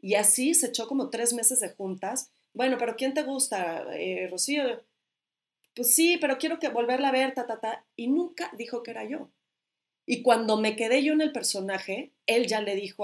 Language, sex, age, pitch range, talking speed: Spanish, female, 30-49, 200-265 Hz, 205 wpm